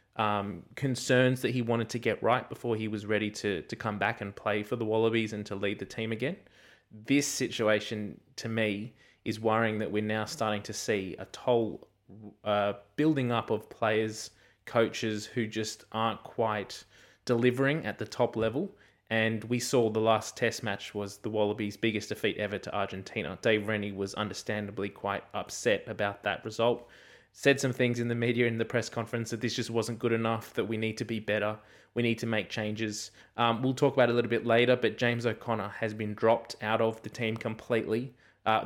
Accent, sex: Australian, male